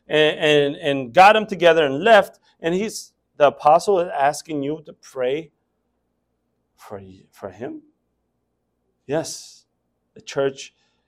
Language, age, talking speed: English, 30-49, 120 wpm